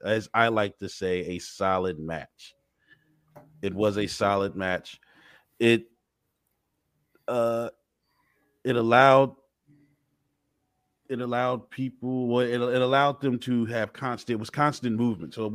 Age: 30-49